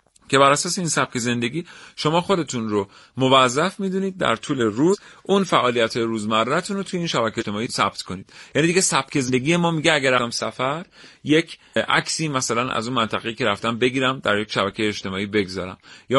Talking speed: 180 wpm